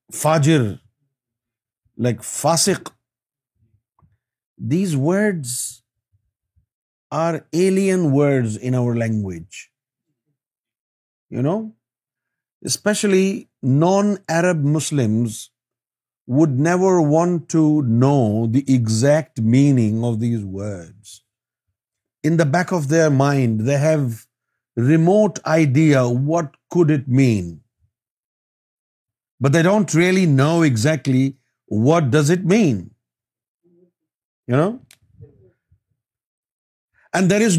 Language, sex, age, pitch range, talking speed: Urdu, male, 50-69, 115-160 Hz, 90 wpm